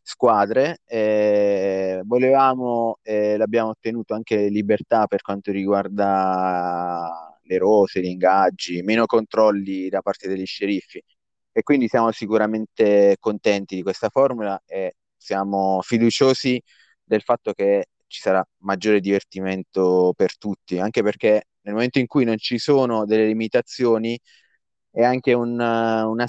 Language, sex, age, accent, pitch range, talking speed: Italian, male, 30-49, native, 100-115 Hz, 130 wpm